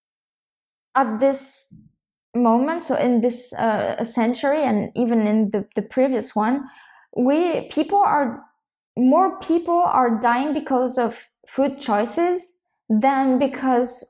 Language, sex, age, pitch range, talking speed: English, female, 20-39, 215-265 Hz, 120 wpm